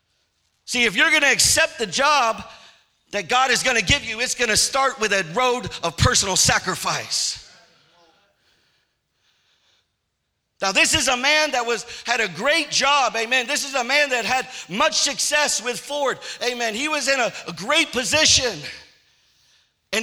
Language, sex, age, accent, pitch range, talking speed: English, male, 50-69, American, 235-285 Hz, 160 wpm